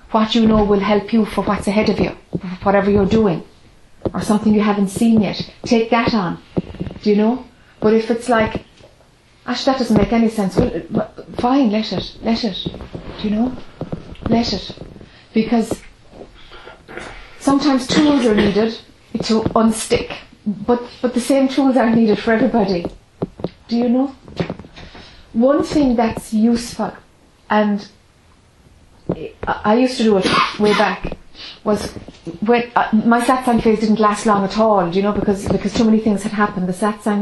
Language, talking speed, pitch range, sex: English, 165 wpm, 200-230 Hz, female